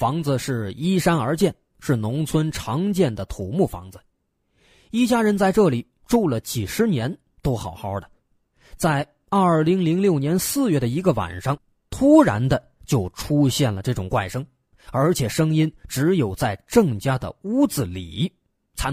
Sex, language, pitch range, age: male, Chinese, 110-170 Hz, 20-39